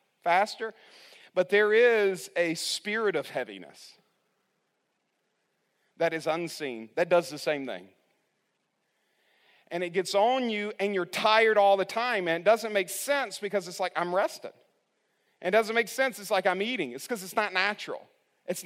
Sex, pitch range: male, 195-235 Hz